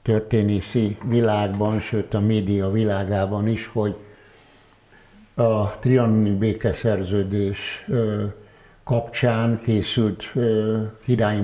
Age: 60-79